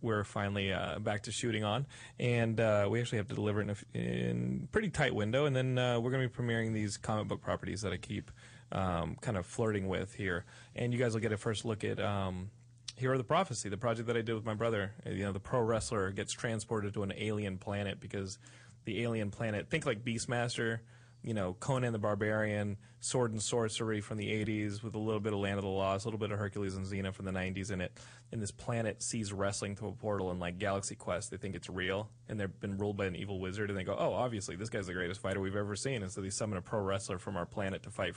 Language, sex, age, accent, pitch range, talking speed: English, male, 30-49, American, 100-120 Hz, 260 wpm